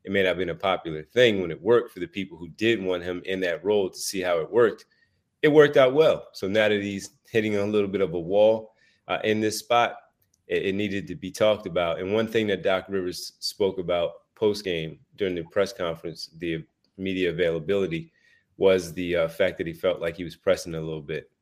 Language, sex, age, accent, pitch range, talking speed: English, male, 30-49, American, 90-105 Hz, 235 wpm